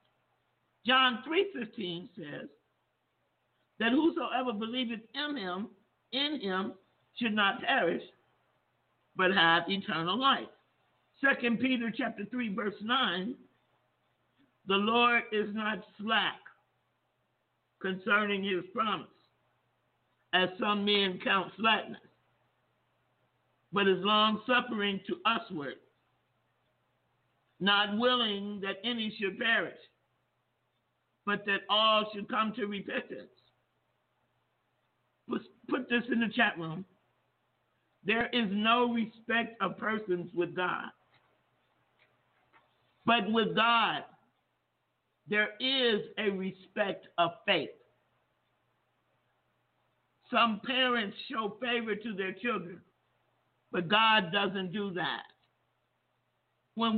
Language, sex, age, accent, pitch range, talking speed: English, male, 50-69, American, 195-235 Hz, 95 wpm